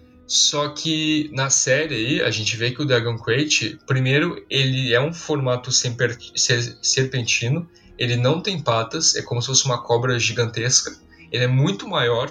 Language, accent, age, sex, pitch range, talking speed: Portuguese, Brazilian, 10-29, male, 120-150 Hz, 170 wpm